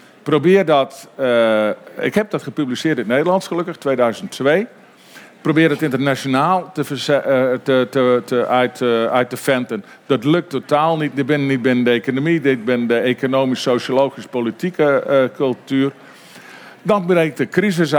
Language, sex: Dutch, male